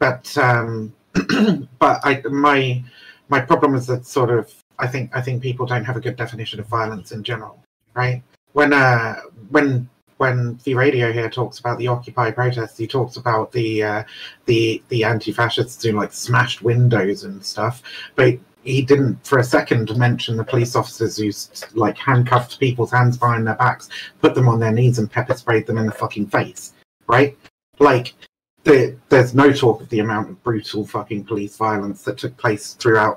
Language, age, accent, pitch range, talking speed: English, 30-49, British, 110-130 Hz, 180 wpm